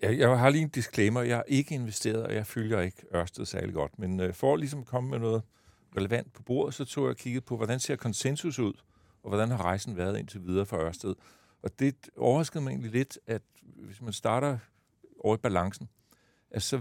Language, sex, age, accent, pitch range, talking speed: Danish, male, 60-79, native, 100-125 Hz, 205 wpm